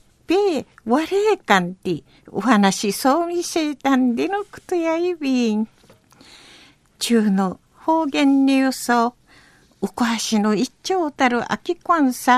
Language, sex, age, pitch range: Japanese, female, 50-69, 230-325 Hz